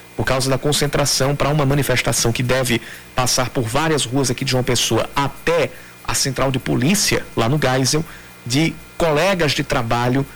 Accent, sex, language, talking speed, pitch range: Brazilian, male, Portuguese, 170 wpm, 125-155 Hz